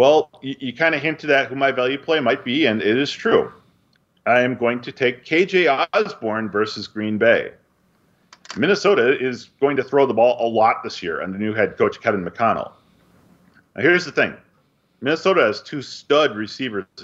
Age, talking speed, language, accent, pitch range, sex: 40-59, 185 wpm, English, American, 105-135 Hz, male